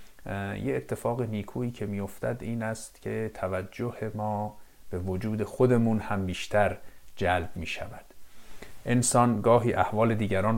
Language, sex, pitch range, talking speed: Persian, male, 95-115 Hz, 130 wpm